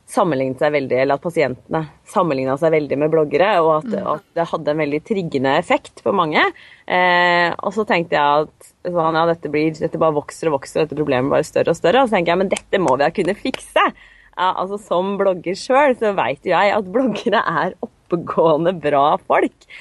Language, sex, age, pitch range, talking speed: English, female, 30-49, 155-205 Hz, 210 wpm